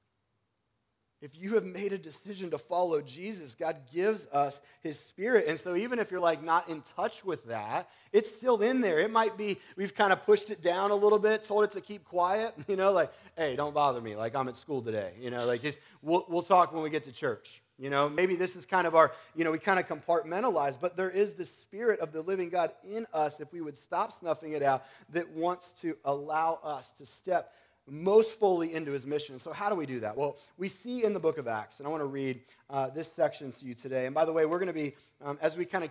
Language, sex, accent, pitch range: English, male, American, 135-185 Hz